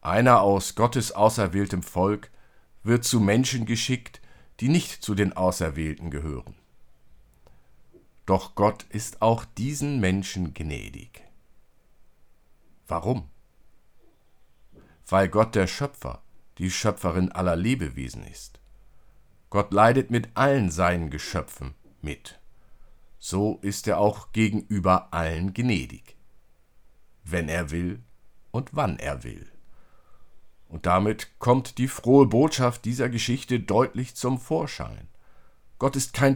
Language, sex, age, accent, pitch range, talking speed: German, male, 50-69, German, 85-120 Hz, 110 wpm